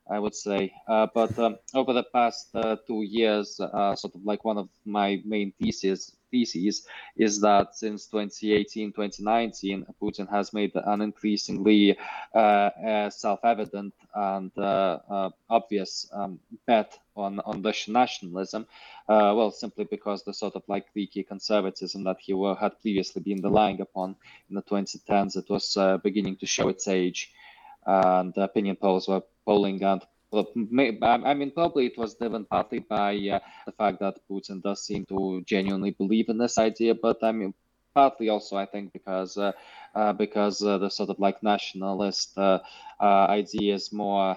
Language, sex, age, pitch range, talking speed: English, male, 20-39, 95-105 Hz, 165 wpm